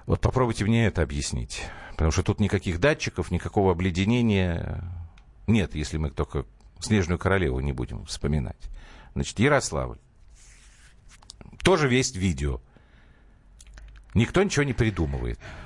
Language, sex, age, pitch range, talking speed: Russian, male, 50-69, 85-130 Hz, 115 wpm